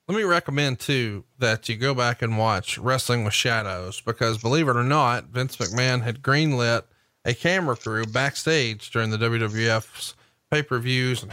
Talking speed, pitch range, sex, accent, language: 175 wpm, 115-140 Hz, male, American, English